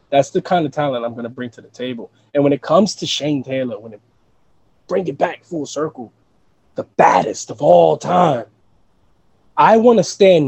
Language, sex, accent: English, male, American